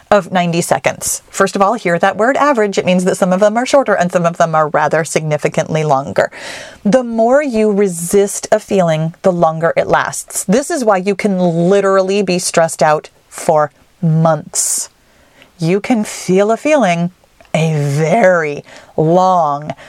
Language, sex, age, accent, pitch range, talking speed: English, female, 30-49, American, 170-255 Hz, 165 wpm